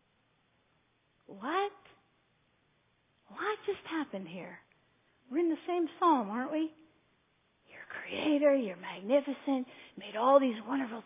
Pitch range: 235-345 Hz